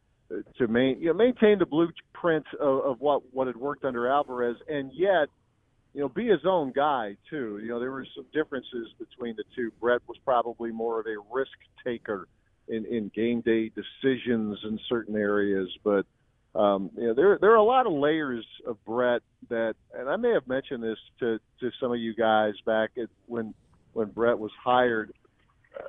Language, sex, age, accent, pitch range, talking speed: English, male, 50-69, American, 115-145 Hz, 190 wpm